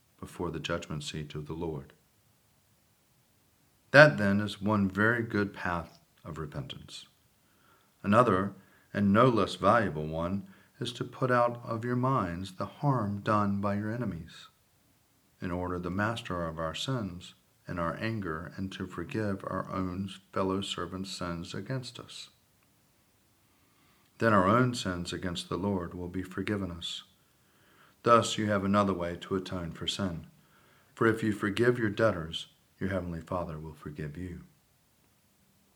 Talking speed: 145 wpm